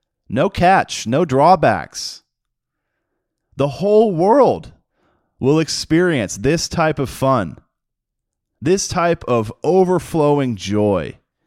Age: 30-49